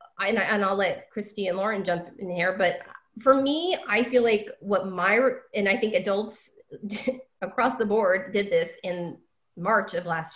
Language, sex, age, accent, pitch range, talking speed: English, female, 20-39, American, 195-265 Hz, 175 wpm